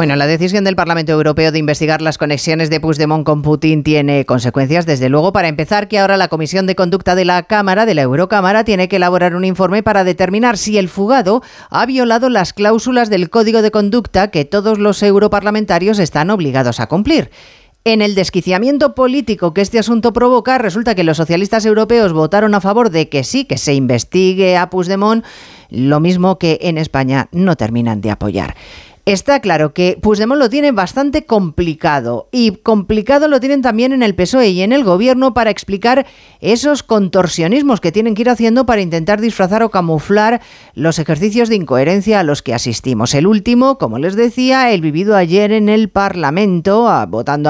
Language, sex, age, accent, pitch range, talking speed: Spanish, female, 40-59, Spanish, 160-225 Hz, 185 wpm